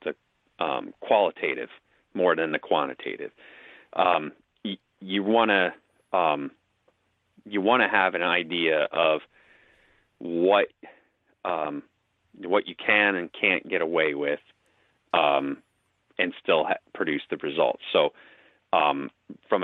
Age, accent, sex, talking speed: 30-49, American, male, 115 wpm